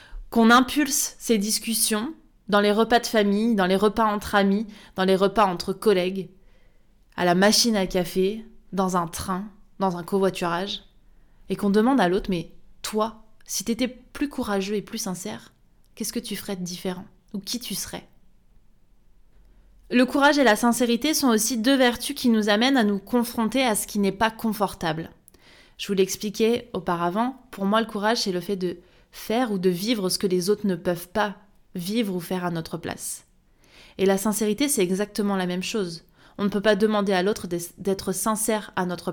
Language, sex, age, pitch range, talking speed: French, female, 20-39, 190-230 Hz, 190 wpm